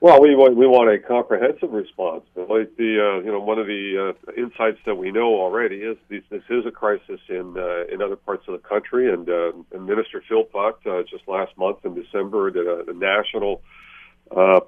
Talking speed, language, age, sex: 215 wpm, English, 50-69, male